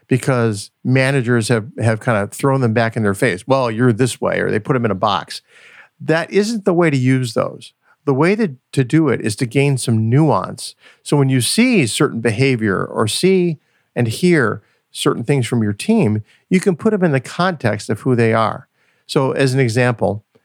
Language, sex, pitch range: English, male, 115-150 Hz